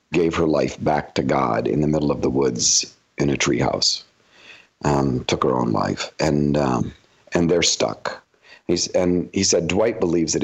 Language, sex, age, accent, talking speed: English, male, 50-69, American, 190 wpm